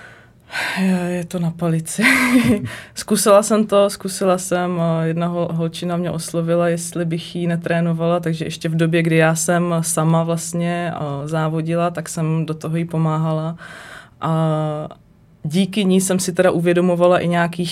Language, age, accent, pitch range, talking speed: Czech, 20-39, native, 160-175 Hz, 140 wpm